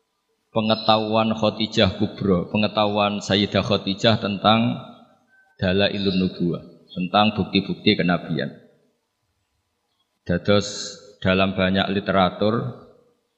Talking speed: 70 wpm